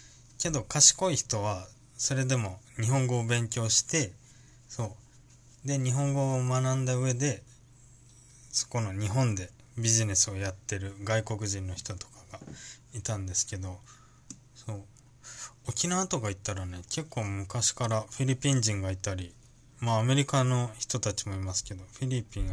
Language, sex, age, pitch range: Japanese, male, 20-39, 110-130 Hz